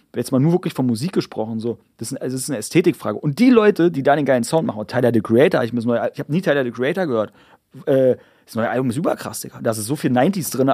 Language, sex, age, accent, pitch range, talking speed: German, male, 30-49, German, 125-160 Hz, 255 wpm